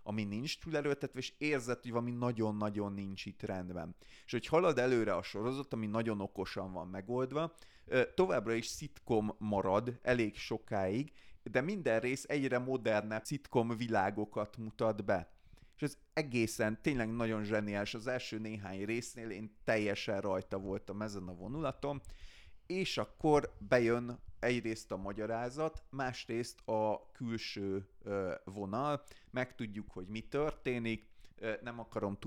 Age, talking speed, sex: 30-49, 130 wpm, male